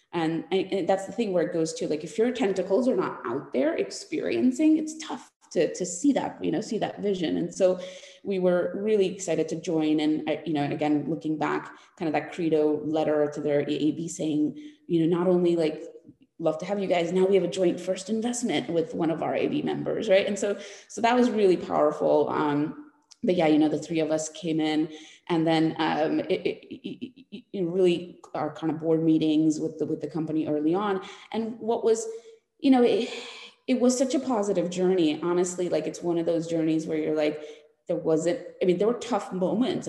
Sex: female